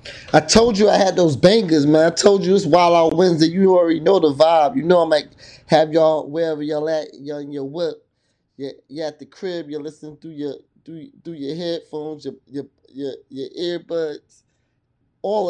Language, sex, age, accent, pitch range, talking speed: English, male, 20-39, American, 135-165 Hz, 200 wpm